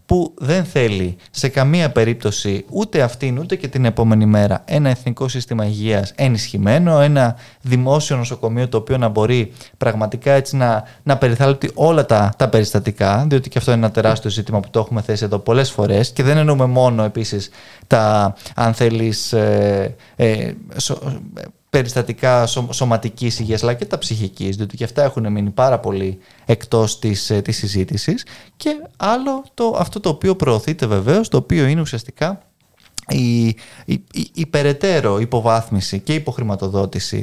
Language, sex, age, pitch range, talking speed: Greek, male, 20-39, 110-140 Hz, 150 wpm